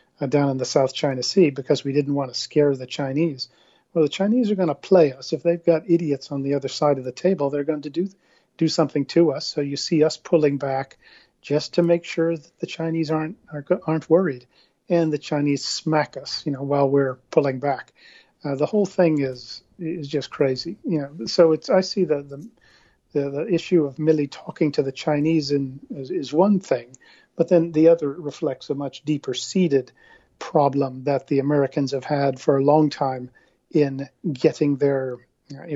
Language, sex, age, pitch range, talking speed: English, male, 40-59, 140-165 Hz, 200 wpm